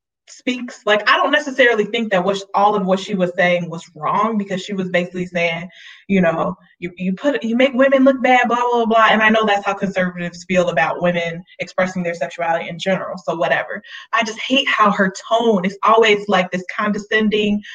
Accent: American